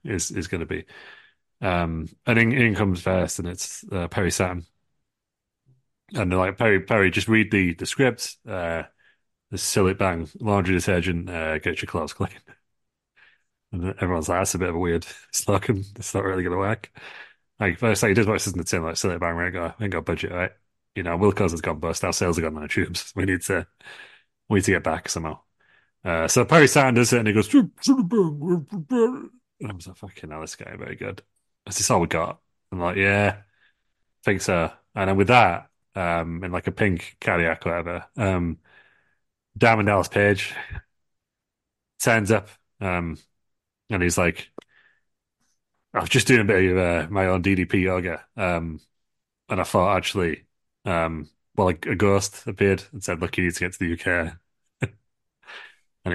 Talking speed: 190 wpm